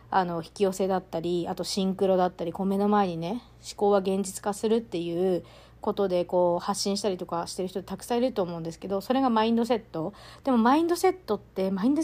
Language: Japanese